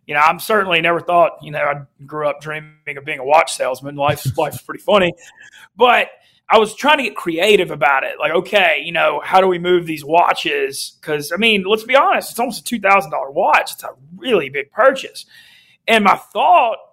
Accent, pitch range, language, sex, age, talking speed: American, 170-215 Hz, English, male, 30-49, 205 wpm